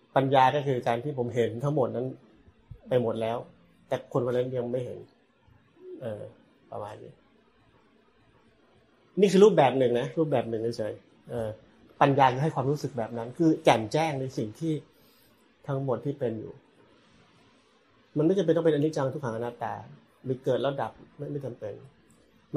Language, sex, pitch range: Thai, male, 115-145 Hz